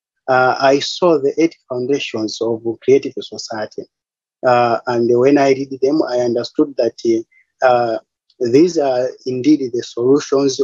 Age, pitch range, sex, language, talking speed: 30-49, 120-150 Hz, male, English, 135 wpm